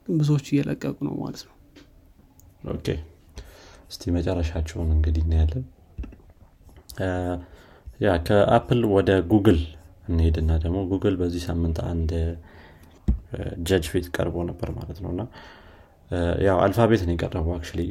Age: 30-49